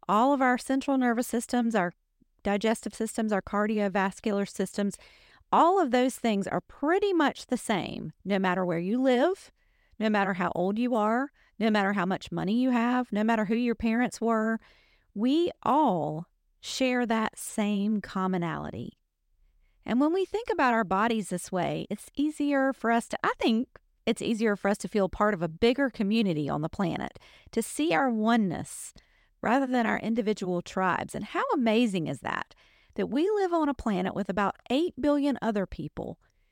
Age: 40-59